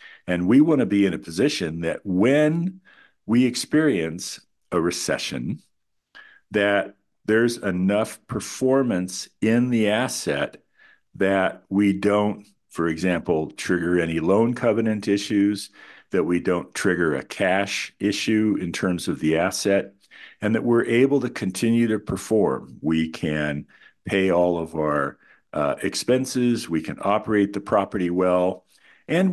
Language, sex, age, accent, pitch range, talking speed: English, male, 50-69, American, 90-115 Hz, 135 wpm